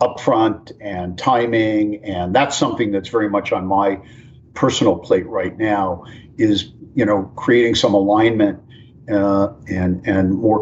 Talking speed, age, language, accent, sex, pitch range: 140 wpm, 50-69, English, American, male, 100-125 Hz